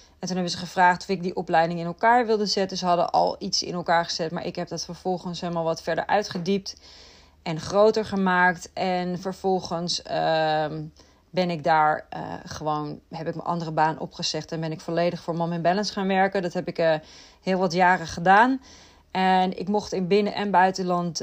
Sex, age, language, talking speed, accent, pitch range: female, 30-49, Dutch, 200 wpm, Dutch, 170-210 Hz